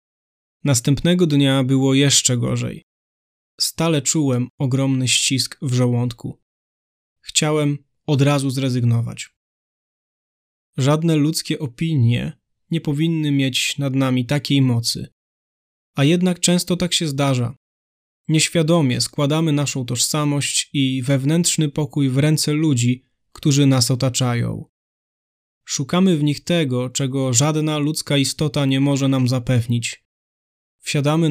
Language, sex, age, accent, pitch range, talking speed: Polish, male, 20-39, native, 130-150 Hz, 110 wpm